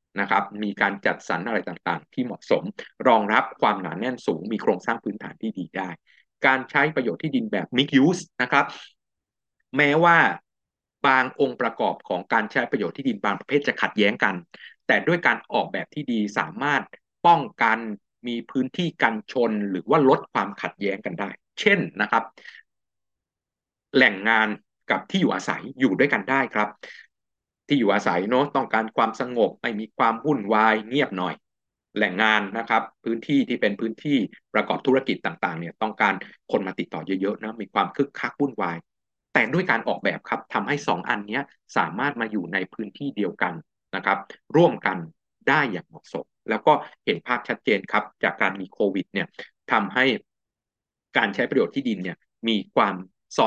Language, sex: Thai, male